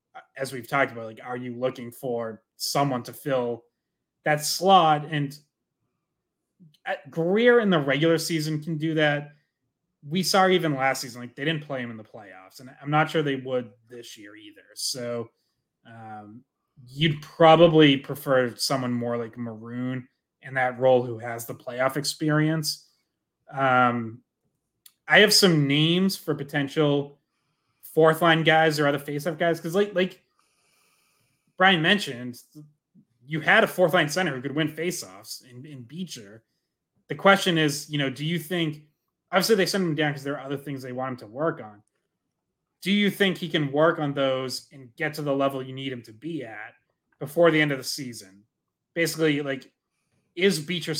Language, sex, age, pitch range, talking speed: English, male, 30-49, 125-160 Hz, 170 wpm